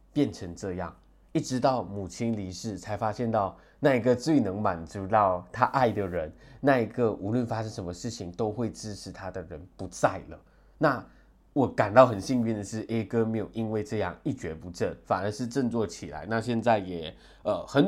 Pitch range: 95-125 Hz